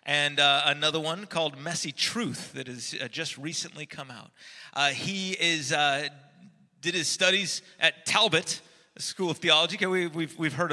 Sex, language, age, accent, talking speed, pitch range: male, English, 30-49, American, 170 wpm, 145-180 Hz